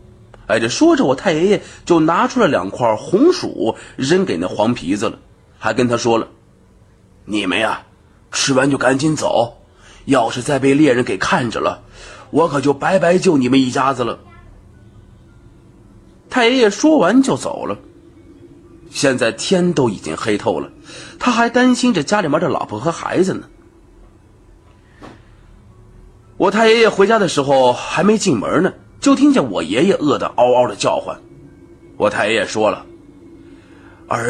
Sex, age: male, 30-49